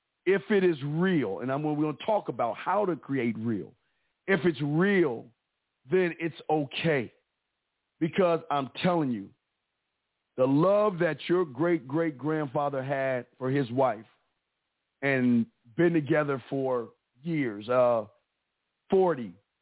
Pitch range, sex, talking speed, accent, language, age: 150-205 Hz, male, 130 wpm, American, English, 50-69